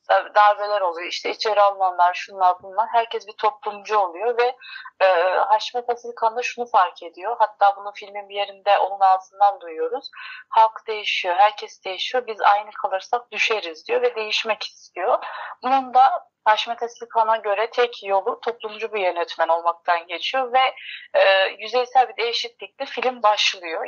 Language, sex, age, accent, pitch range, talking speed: Turkish, female, 30-49, native, 195-240 Hz, 145 wpm